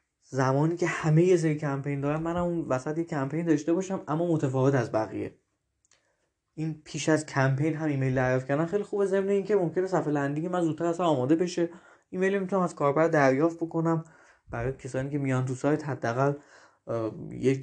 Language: Persian